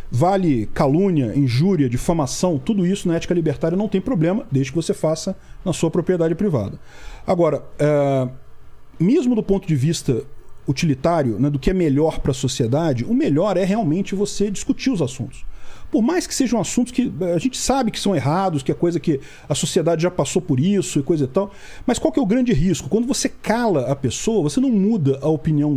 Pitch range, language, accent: 145-205 Hz, Portuguese, Brazilian